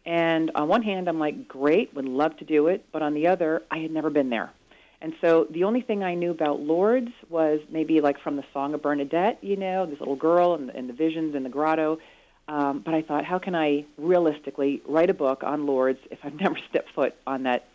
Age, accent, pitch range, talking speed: 40-59, American, 140-165 Hz, 235 wpm